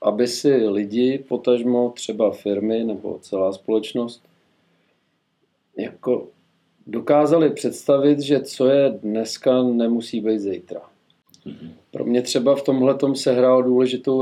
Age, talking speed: 40-59, 115 wpm